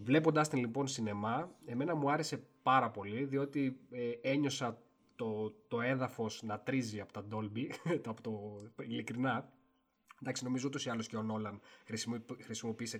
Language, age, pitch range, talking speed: Greek, 20-39, 110-140 Hz, 150 wpm